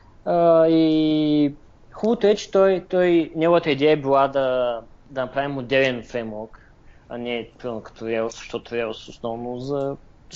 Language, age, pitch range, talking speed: Bulgarian, 20-39, 115-150 Hz, 155 wpm